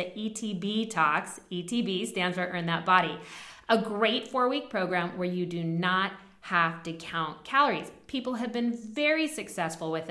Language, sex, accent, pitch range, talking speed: English, female, American, 170-225 Hz, 160 wpm